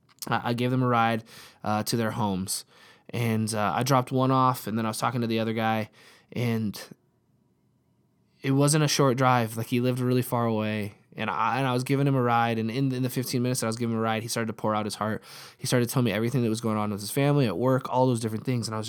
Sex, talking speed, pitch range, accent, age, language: male, 275 wpm, 110-130 Hz, American, 20-39, English